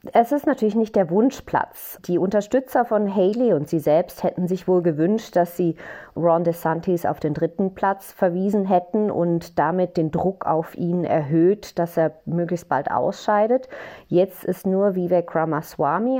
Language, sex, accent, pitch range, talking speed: German, female, German, 155-195 Hz, 165 wpm